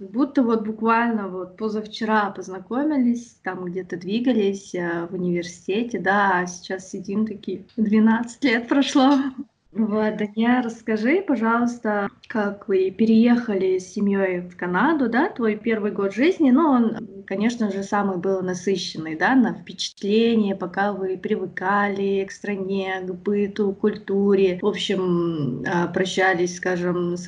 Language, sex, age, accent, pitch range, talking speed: Russian, female, 20-39, native, 185-220 Hz, 130 wpm